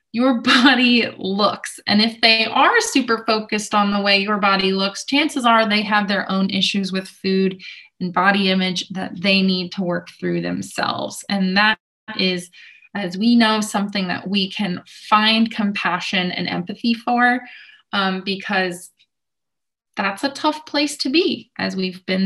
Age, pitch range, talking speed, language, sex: 20-39, 190-230 Hz, 160 wpm, English, female